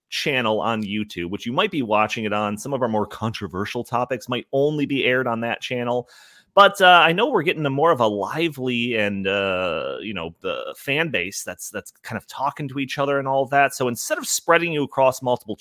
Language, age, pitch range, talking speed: English, 30-49, 105-165 Hz, 225 wpm